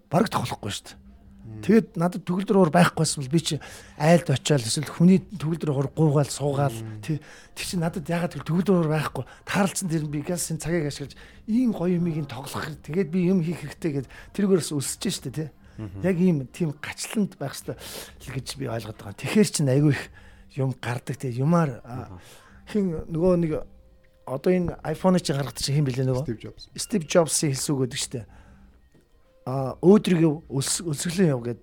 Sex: male